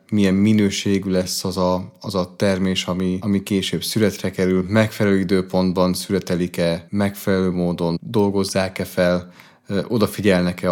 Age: 30-49